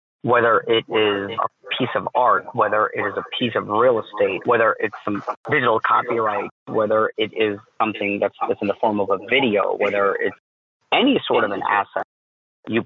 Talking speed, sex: 185 wpm, male